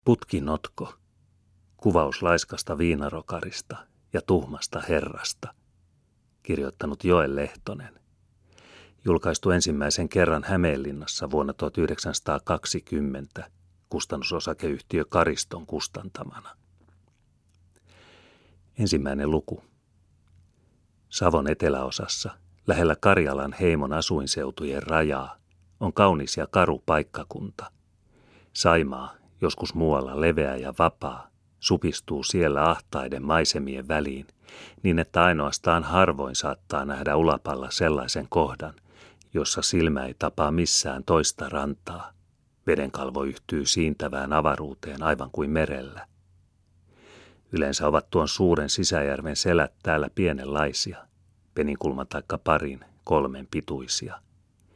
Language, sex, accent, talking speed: Finnish, male, native, 90 wpm